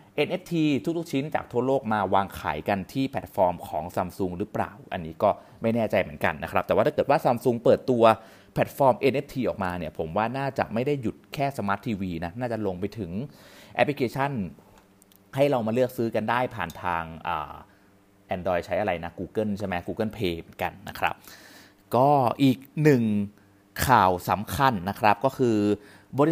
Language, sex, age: Thai, male, 30-49